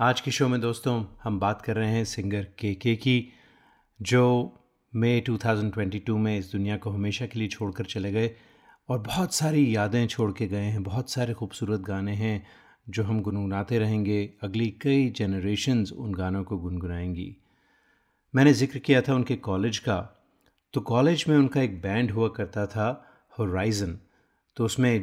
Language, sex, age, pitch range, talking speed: Hindi, male, 30-49, 100-120 Hz, 170 wpm